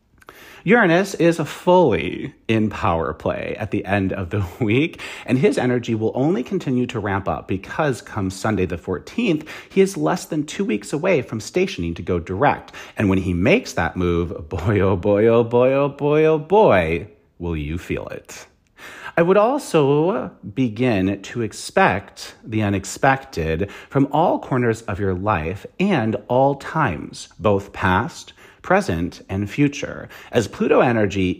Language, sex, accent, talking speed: English, male, American, 155 wpm